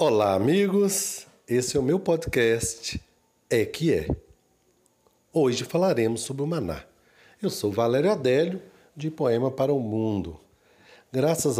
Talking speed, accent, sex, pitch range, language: 130 wpm, Brazilian, male, 110-155 Hz, Portuguese